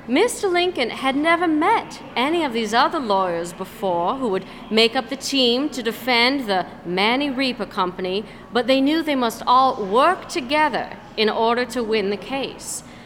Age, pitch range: 40-59, 210-290 Hz